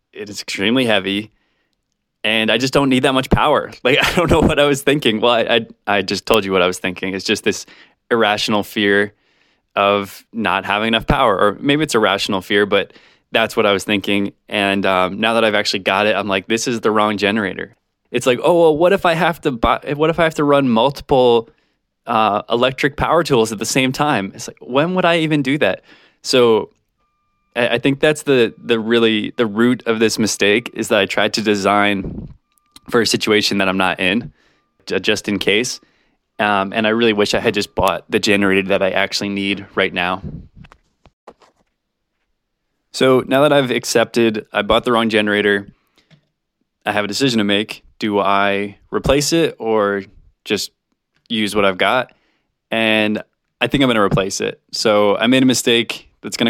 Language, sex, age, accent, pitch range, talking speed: English, male, 20-39, American, 100-130 Hz, 200 wpm